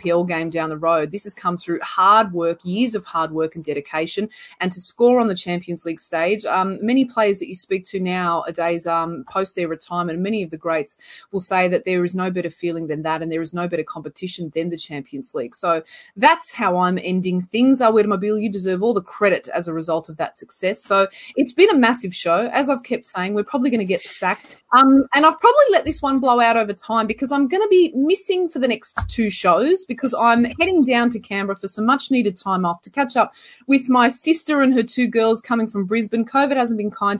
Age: 20-39